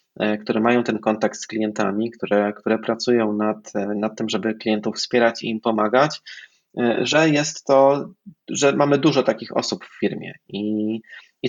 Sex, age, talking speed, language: male, 20-39, 155 wpm, Polish